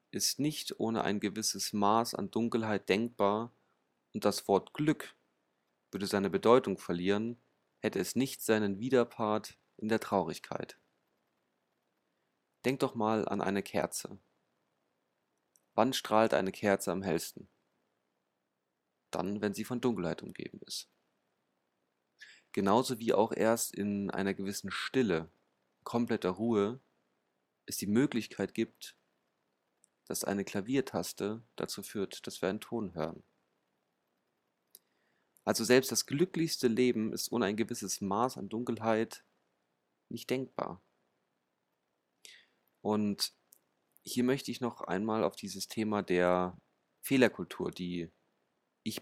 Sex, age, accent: male, 30-49, German